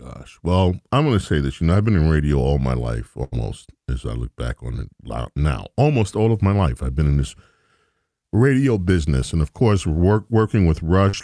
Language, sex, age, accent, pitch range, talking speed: English, male, 40-59, American, 80-110 Hz, 225 wpm